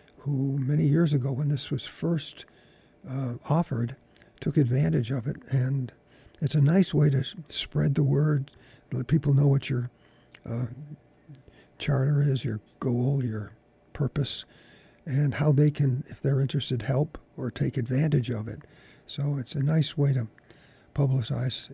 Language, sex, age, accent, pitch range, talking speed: English, male, 50-69, American, 120-145 Hz, 150 wpm